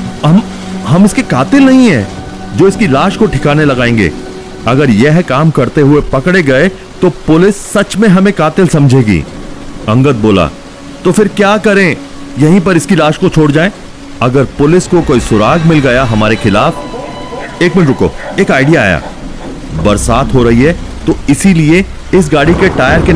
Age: 40-59